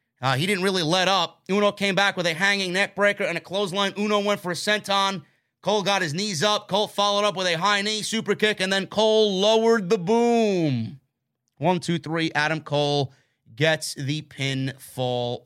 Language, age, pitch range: English, 30-49, 140-210 Hz